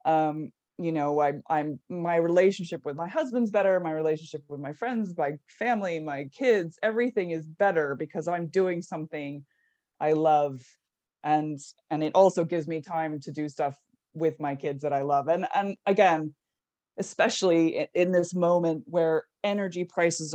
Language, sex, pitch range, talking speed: English, female, 160-225 Hz, 160 wpm